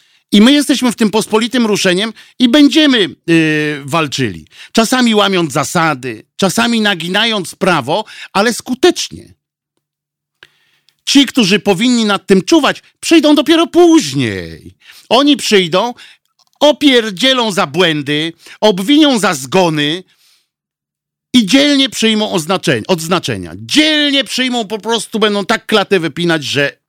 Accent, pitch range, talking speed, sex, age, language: native, 150-225 Hz, 105 wpm, male, 50-69, Polish